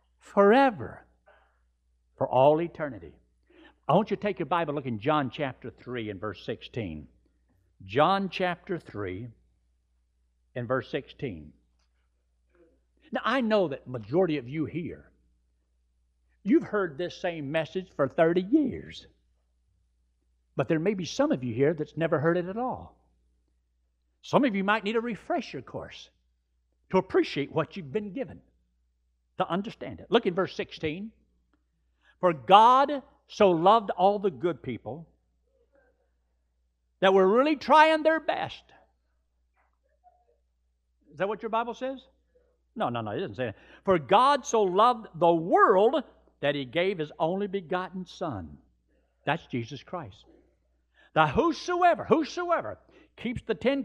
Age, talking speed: 60-79, 140 wpm